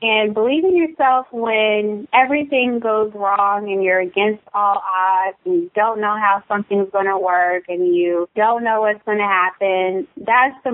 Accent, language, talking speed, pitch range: American, English, 180 wpm, 185-215 Hz